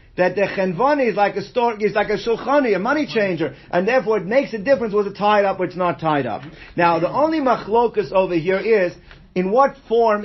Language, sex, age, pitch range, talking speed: English, male, 50-69, 185-240 Hz, 230 wpm